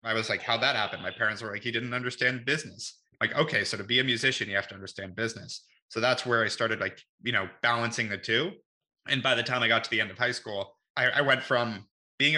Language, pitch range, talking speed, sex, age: English, 110-130 Hz, 260 wpm, male, 20-39